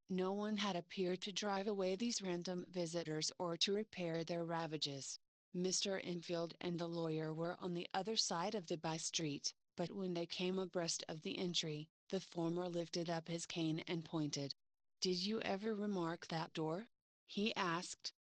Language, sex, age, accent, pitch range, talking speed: English, female, 30-49, American, 165-190 Hz, 170 wpm